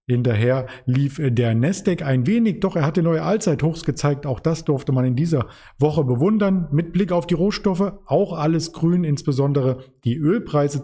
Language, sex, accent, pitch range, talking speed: German, male, German, 125-165 Hz, 170 wpm